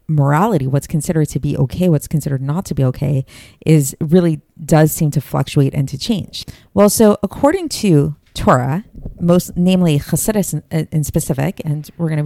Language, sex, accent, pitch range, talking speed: English, female, American, 145-180 Hz, 165 wpm